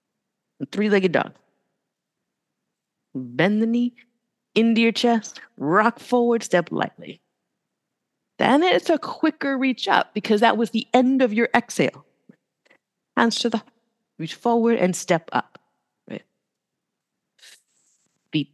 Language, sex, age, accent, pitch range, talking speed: English, female, 50-69, American, 165-230 Hz, 115 wpm